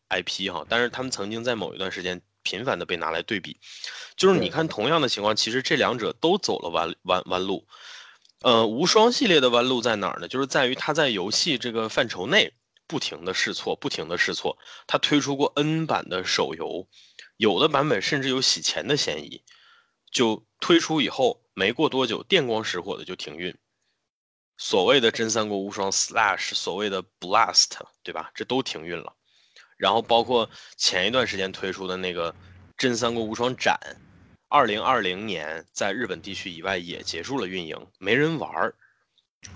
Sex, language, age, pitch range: male, Chinese, 20-39, 105-165 Hz